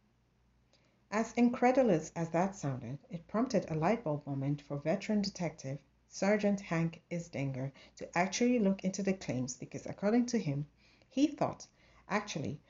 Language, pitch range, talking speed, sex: English, 145-195 Hz, 135 wpm, female